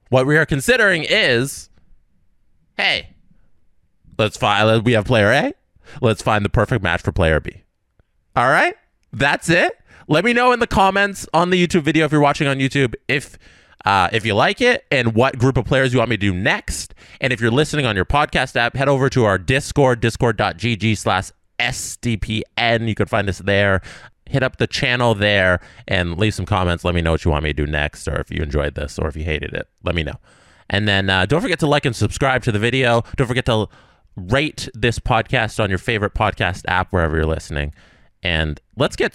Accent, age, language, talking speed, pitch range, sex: American, 20-39, English, 210 wpm, 95-135 Hz, male